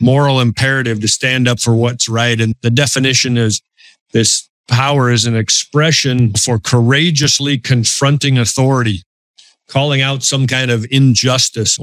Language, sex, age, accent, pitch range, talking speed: English, male, 50-69, American, 120-155 Hz, 135 wpm